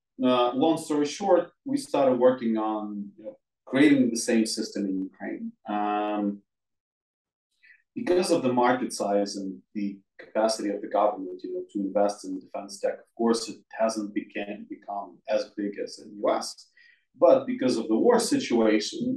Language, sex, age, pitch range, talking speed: English, male, 30-49, 105-135 Hz, 165 wpm